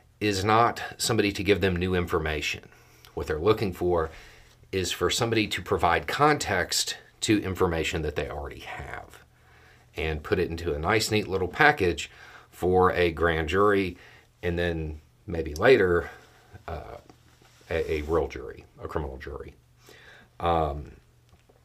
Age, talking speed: 40-59, 140 wpm